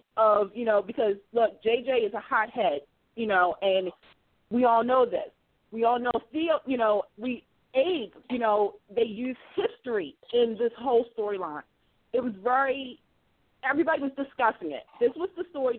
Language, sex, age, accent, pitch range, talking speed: English, female, 30-49, American, 210-265 Hz, 165 wpm